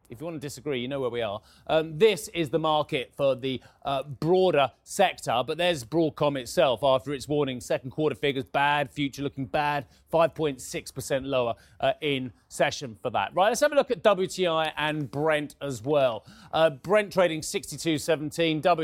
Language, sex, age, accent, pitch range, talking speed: English, male, 30-49, British, 140-185 Hz, 180 wpm